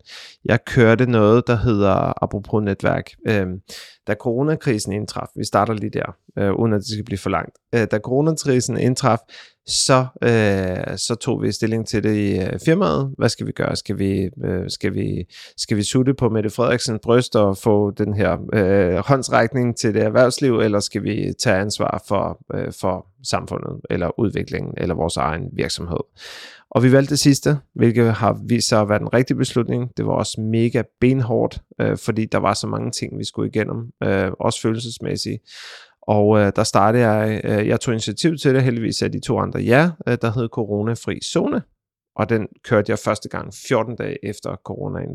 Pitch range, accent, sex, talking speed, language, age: 105-125 Hz, native, male, 180 wpm, Danish, 30-49